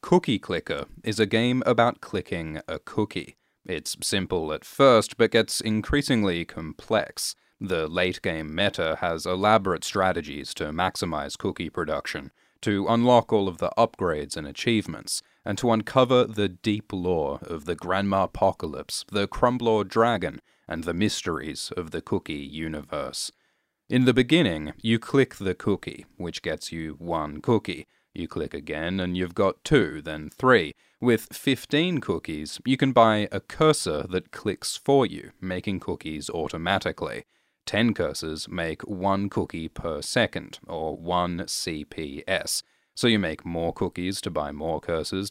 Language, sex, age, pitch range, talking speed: English, male, 30-49, 85-115 Hz, 145 wpm